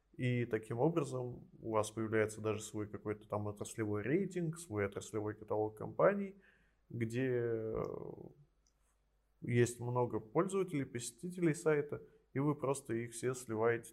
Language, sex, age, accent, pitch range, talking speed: Russian, male, 20-39, native, 110-145 Hz, 120 wpm